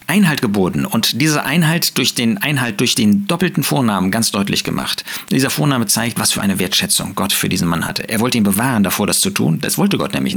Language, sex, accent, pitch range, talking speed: German, male, German, 100-155 Hz, 225 wpm